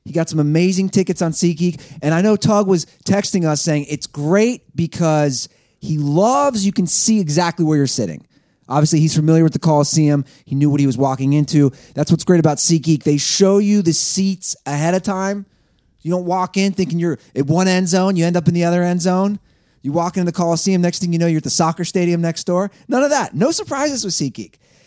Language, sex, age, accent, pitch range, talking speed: English, male, 30-49, American, 145-185 Hz, 225 wpm